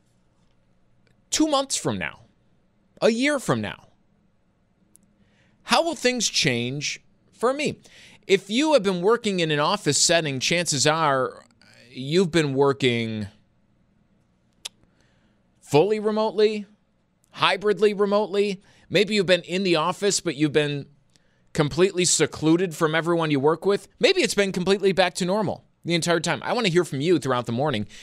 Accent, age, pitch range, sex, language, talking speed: American, 30-49, 135-195 Hz, male, English, 145 wpm